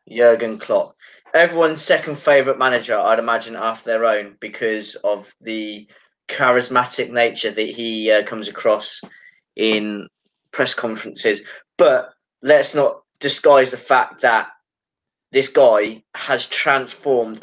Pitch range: 120-165 Hz